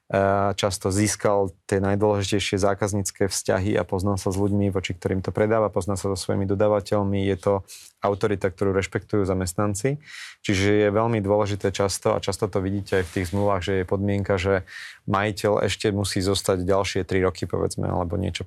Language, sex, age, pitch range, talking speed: Slovak, male, 30-49, 95-105 Hz, 170 wpm